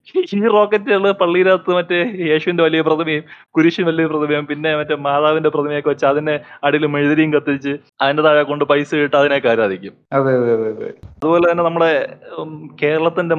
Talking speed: 125 wpm